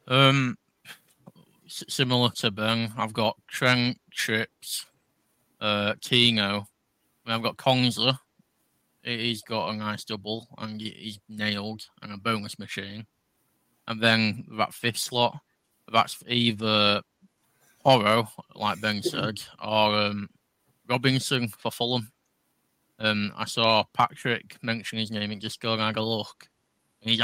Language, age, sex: English, 20-39, male